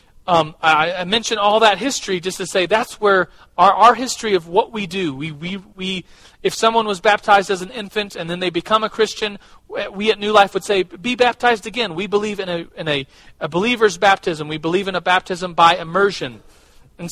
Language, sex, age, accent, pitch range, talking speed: English, male, 40-59, American, 145-190 Hz, 215 wpm